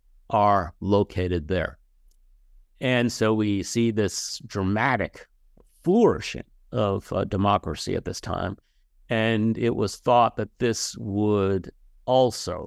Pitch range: 85-110 Hz